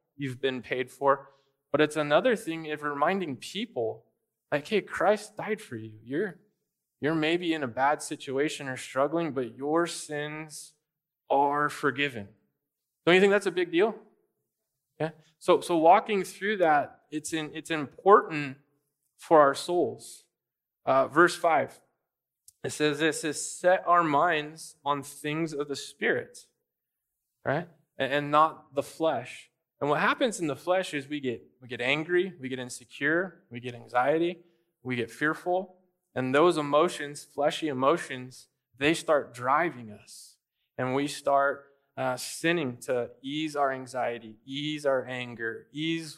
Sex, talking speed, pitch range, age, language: male, 150 wpm, 130-160 Hz, 20-39, English